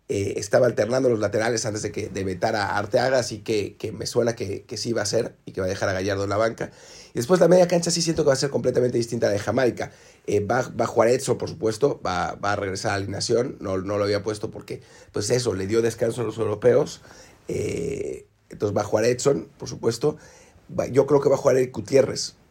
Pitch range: 100-140 Hz